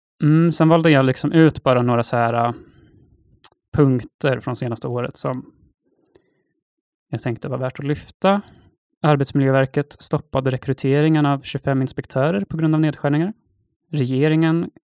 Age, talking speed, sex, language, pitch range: 20-39, 130 wpm, male, Swedish, 125-150 Hz